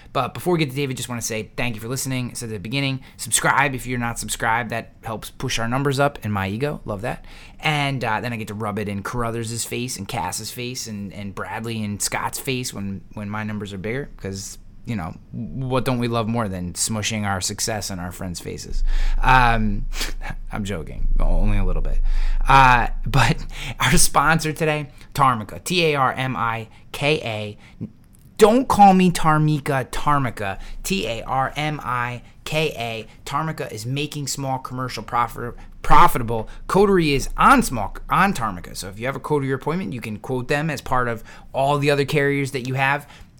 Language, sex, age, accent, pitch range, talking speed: English, male, 20-39, American, 105-135 Hz, 190 wpm